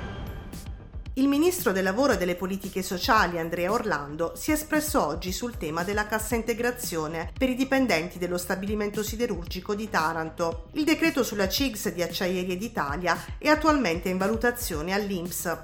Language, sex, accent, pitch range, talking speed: Italian, female, native, 180-235 Hz, 150 wpm